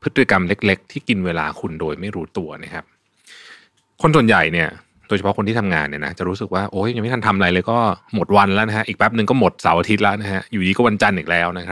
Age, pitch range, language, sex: 20-39, 90-115 Hz, Thai, male